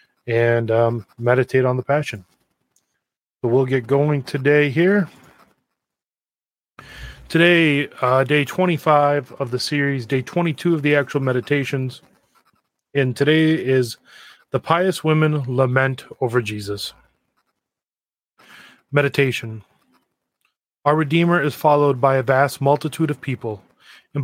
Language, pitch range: English, 125-155 Hz